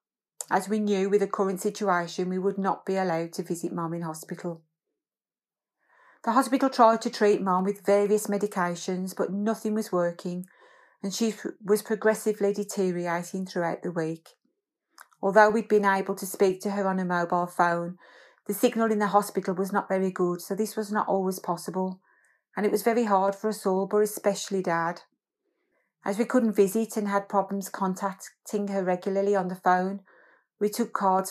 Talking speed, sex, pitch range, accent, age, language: 175 wpm, female, 180-210 Hz, British, 30-49, English